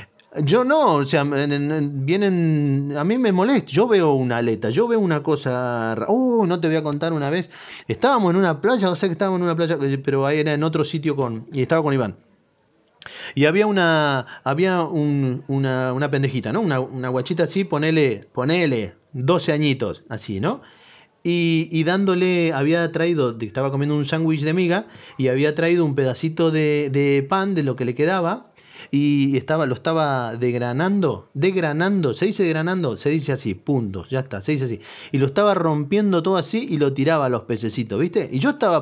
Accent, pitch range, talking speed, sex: Argentinian, 130-180 Hz, 195 wpm, male